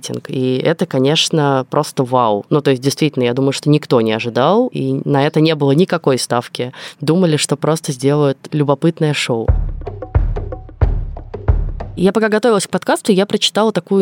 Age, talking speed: 20-39, 155 wpm